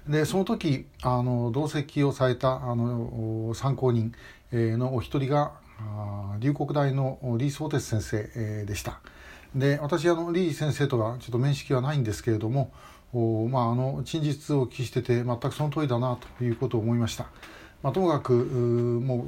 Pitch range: 115-140 Hz